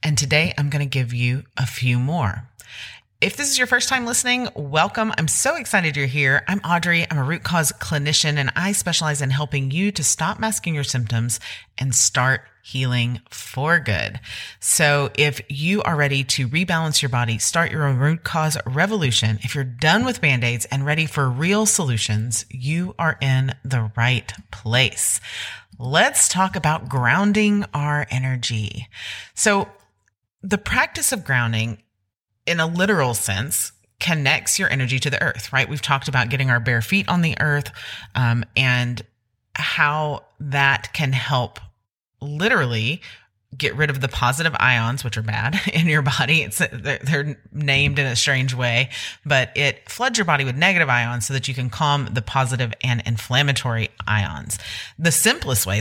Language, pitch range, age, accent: English, 120-160 Hz, 30-49, American